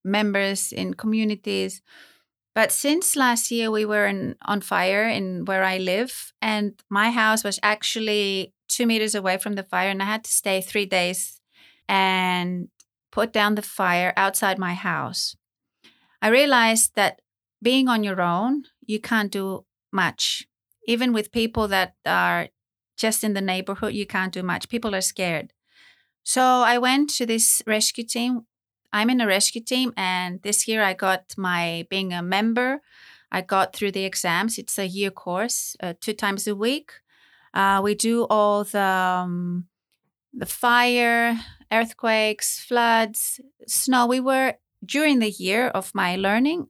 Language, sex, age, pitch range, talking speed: English, female, 30-49, 190-235 Hz, 160 wpm